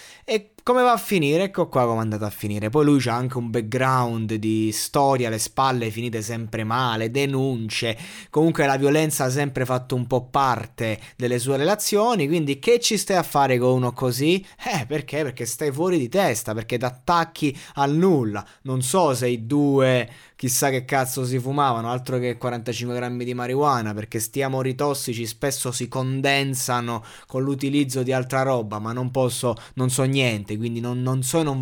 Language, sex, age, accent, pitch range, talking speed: Italian, male, 20-39, native, 120-145 Hz, 185 wpm